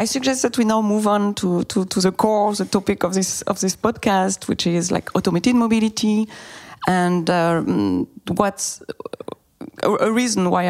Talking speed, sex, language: 170 wpm, female, English